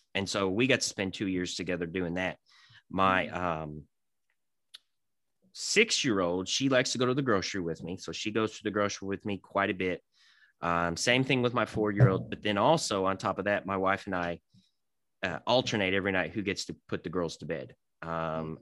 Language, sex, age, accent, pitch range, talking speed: English, male, 30-49, American, 90-110 Hz, 205 wpm